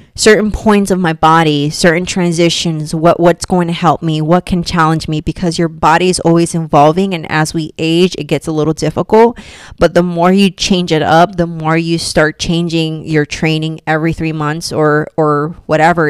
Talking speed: 195 wpm